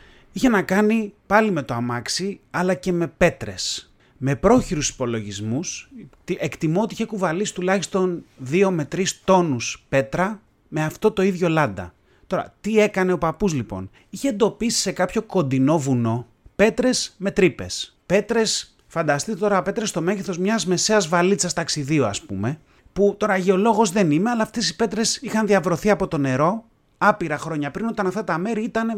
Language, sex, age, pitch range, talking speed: Greek, male, 30-49, 145-215 Hz, 160 wpm